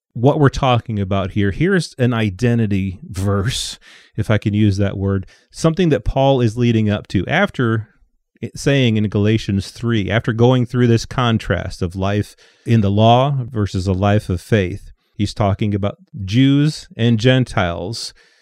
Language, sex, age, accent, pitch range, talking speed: English, male, 30-49, American, 100-125 Hz, 155 wpm